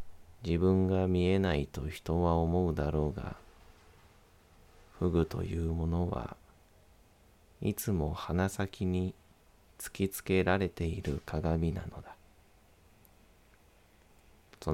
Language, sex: Japanese, male